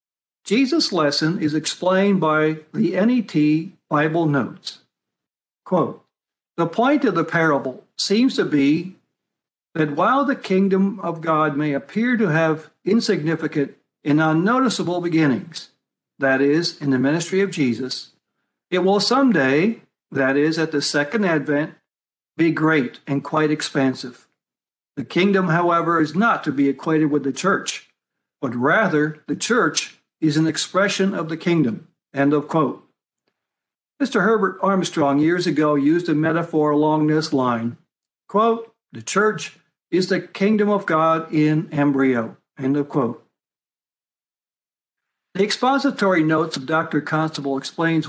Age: 60-79